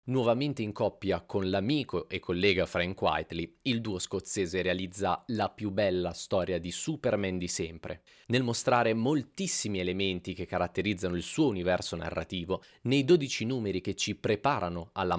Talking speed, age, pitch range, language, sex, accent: 150 wpm, 30-49, 90-115 Hz, Italian, male, native